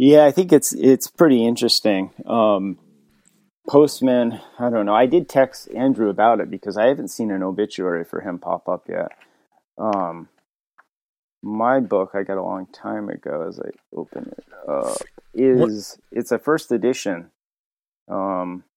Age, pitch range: 30-49, 95-120 Hz